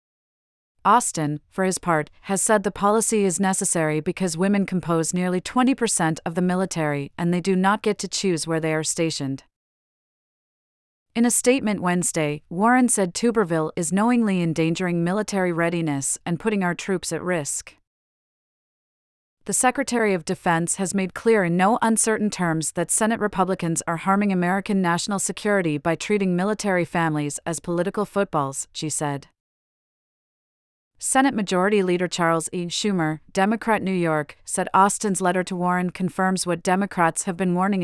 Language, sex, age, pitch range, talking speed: English, female, 40-59, 165-200 Hz, 150 wpm